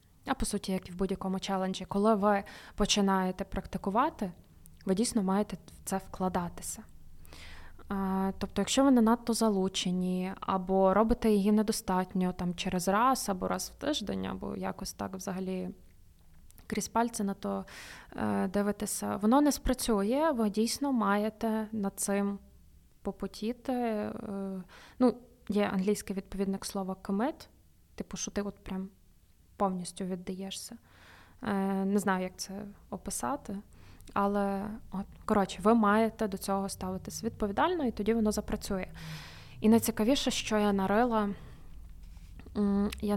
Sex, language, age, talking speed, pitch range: female, Ukrainian, 20-39, 125 wpm, 190-215 Hz